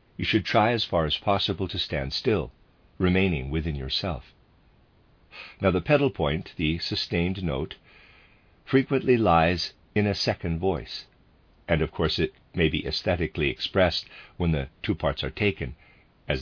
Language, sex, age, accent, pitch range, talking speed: English, male, 50-69, American, 80-105 Hz, 150 wpm